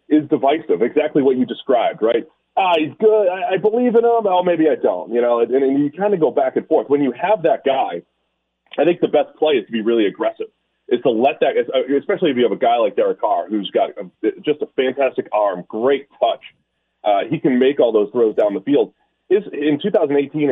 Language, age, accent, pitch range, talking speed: English, 30-49, American, 130-215 Hz, 235 wpm